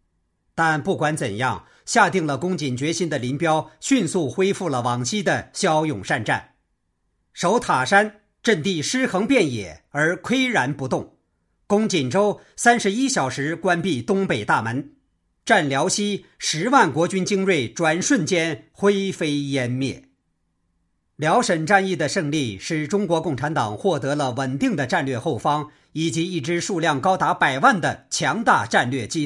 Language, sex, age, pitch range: Chinese, male, 50-69, 125-180 Hz